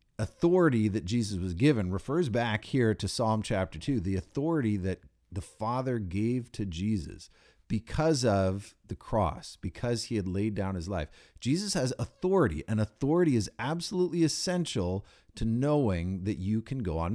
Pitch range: 95-125 Hz